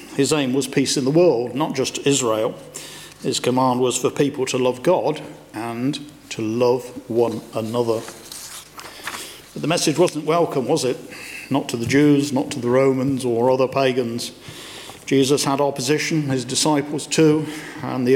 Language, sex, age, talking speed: English, male, 50-69, 160 wpm